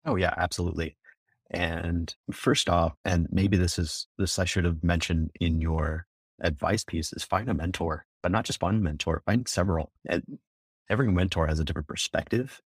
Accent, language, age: American, English, 30-49